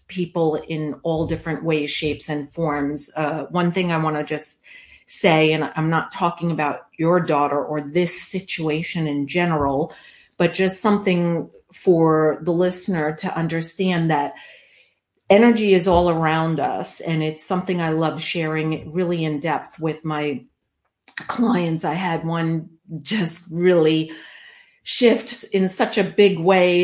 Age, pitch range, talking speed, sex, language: 40-59, 160-190 Hz, 145 wpm, female, English